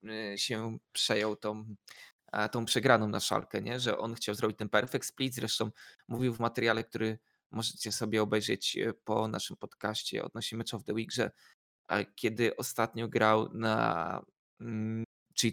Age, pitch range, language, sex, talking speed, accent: 20-39, 110-135 Hz, Polish, male, 140 wpm, native